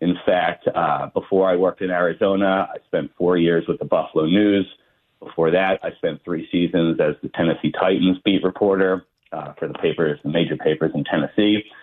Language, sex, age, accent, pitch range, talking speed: English, male, 40-59, American, 95-115 Hz, 190 wpm